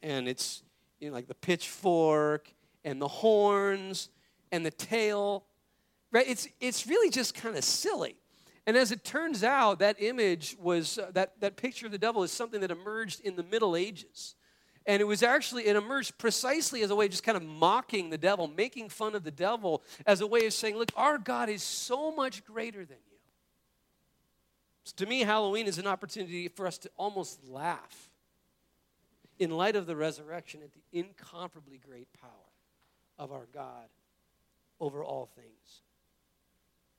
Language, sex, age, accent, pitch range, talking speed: English, male, 40-59, American, 160-215 Hz, 175 wpm